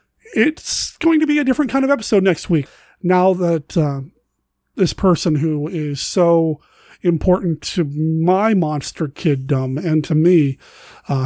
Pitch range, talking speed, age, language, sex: 155-190 Hz, 150 wpm, 30-49, English, male